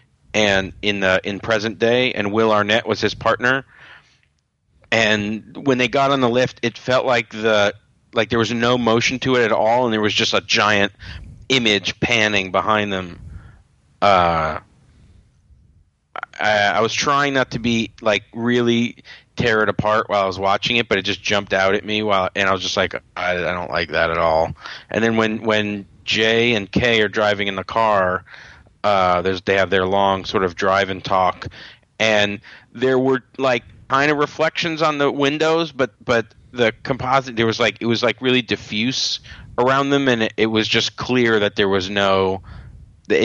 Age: 40-59